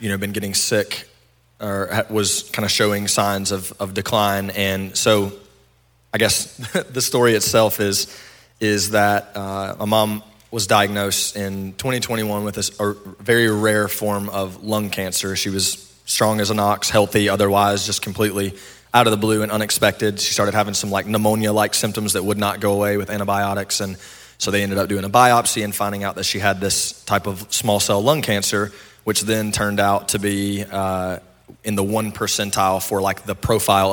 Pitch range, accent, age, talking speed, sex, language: 95-105 Hz, American, 20-39, 185 wpm, male, English